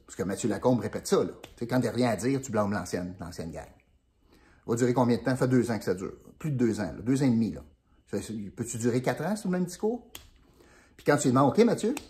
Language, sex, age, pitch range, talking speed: French, male, 50-69, 105-155 Hz, 290 wpm